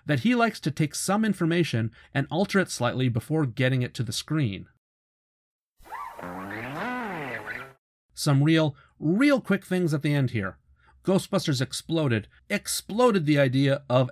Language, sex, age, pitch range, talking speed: English, male, 40-59, 115-160 Hz, 135 wpm